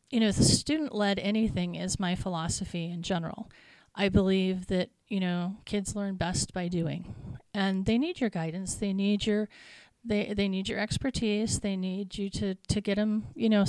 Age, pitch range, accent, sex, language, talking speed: 30-49, 185-215 Hz, American, female, English, 190 wpm